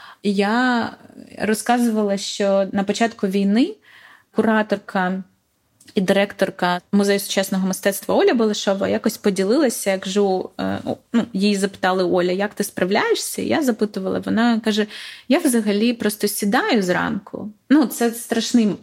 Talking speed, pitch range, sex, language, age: 120 wpm, 190-235 Hz, female, Ukrainian, 20-39